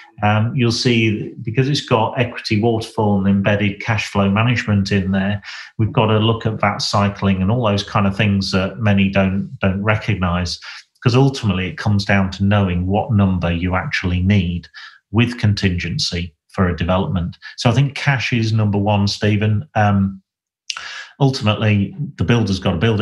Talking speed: 170 wpm